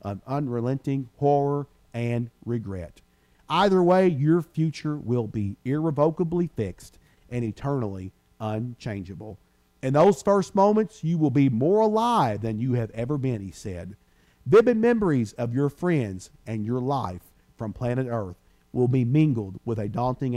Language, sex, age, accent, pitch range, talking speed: English, male, 50-69, American, 90-140 Hz, 145 wpm